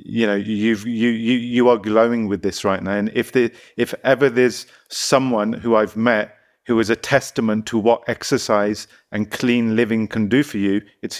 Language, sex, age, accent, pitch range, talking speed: English, male, 40-59, British, 110-130 Hz, 200 wpm